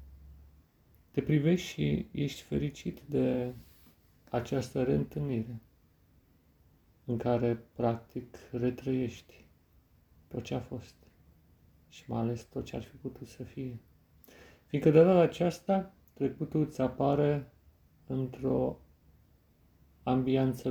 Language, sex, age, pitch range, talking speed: Romanian, male, 40-59, 85-130 Hz, 100 wpm